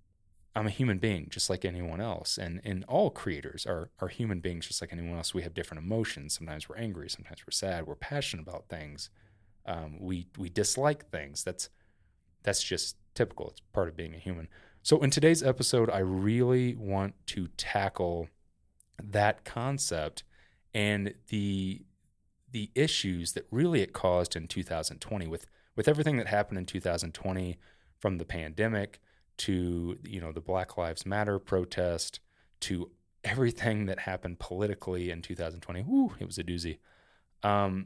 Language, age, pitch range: English, 30-49, 85-110 Hz